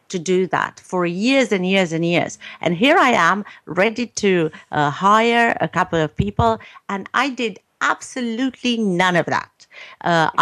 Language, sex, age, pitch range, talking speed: English, female, 50-69, 160-210 Hz, 165 wpm